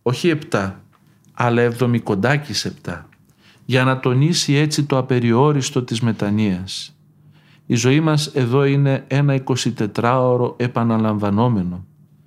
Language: Greek